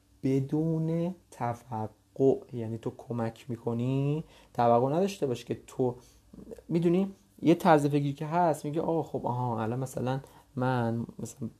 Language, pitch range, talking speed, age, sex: Persian, 115-145 Hz, 135 wpm, 30-49, male